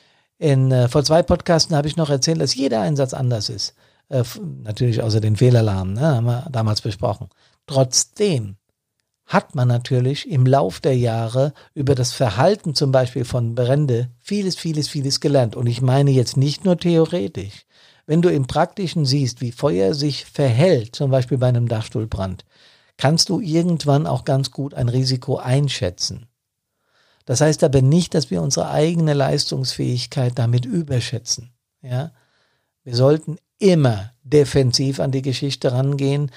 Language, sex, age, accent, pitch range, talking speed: German, male, 50-69, German, 120-145 Hz, 155 wpm